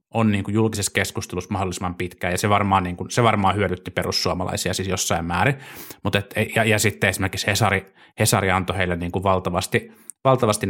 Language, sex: Finnish, male